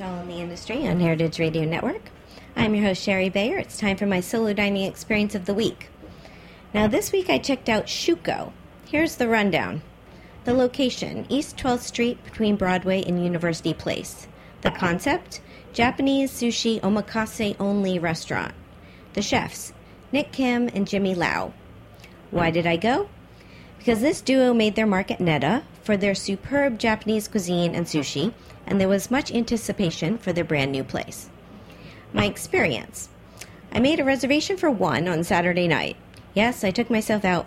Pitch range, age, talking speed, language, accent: 170-235 Hz, 40-59, 160 wpm, English, American